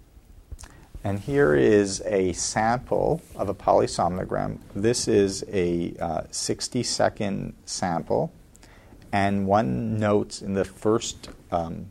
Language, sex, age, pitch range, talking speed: English, male, 40-59, 90-110 Hz, 110 wpm